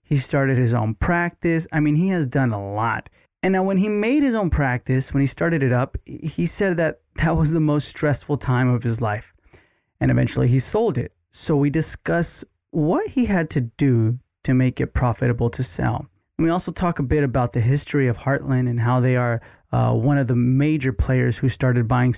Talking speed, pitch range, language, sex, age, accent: 215 wpm, 125-155 Hz, English, male, 30-49, American